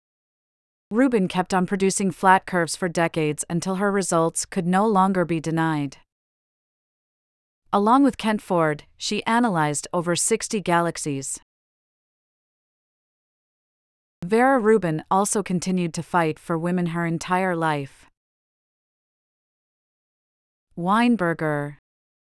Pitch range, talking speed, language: 155-195 Hz, 100 wpm, English